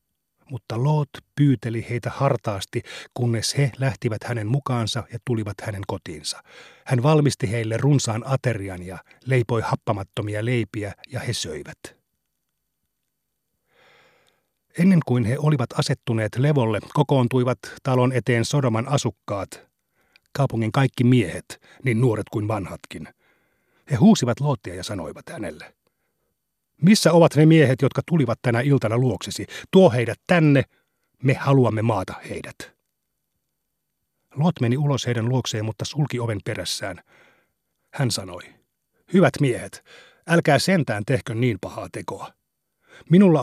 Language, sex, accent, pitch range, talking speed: Finnish, male, native, 115-140 Hz, 120 wpm